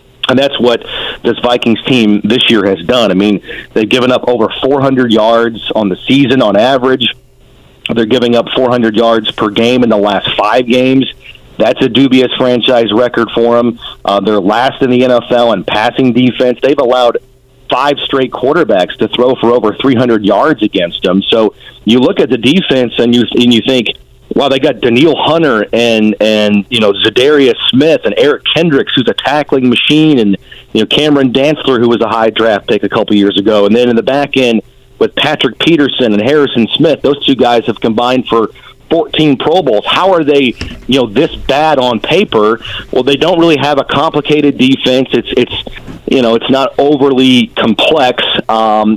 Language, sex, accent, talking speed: English, male, American, 190 wpm